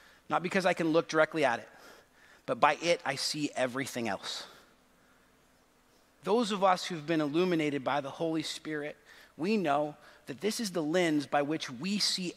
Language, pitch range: English, 170-240 Hz